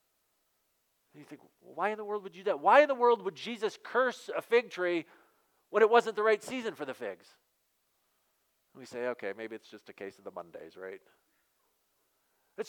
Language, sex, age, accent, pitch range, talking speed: English, male, 40-59, American, 145-210 Hz, 210 wpm